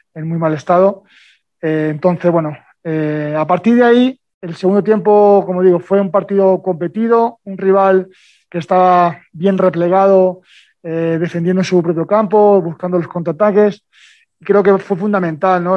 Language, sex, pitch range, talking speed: Spanish, male, 170-195 Hz, 150 wpm